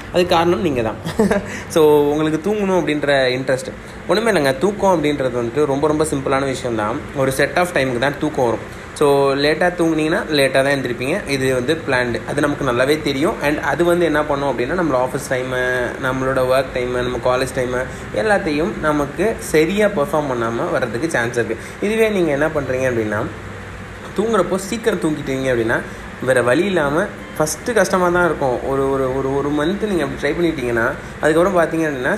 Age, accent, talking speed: 20-39, native, 165 wpm